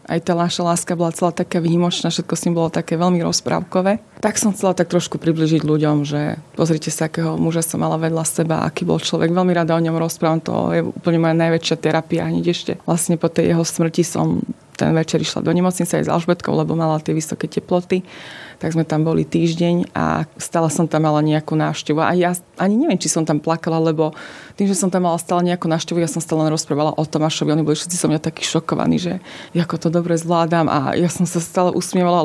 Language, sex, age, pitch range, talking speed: Slovak, female, 20-39, 160-180 Hz, 220 wpm